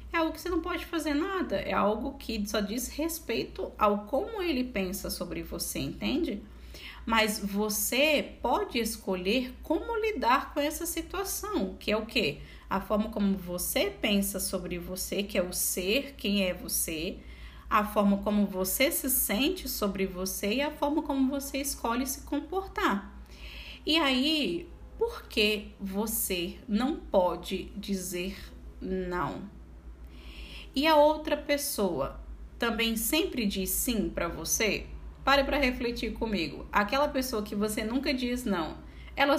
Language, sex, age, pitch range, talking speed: Portuguese, female, 10-29, 190-275 Hz, 145 wpm